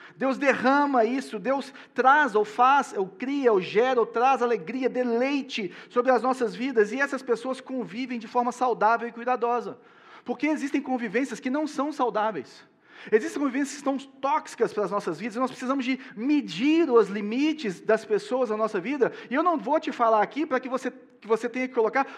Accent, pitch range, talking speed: Brazilian, 195-265 Hz, 190 wpm